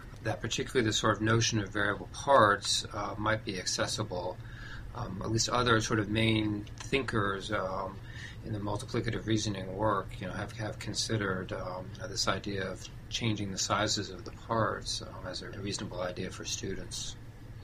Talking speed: 175 wpm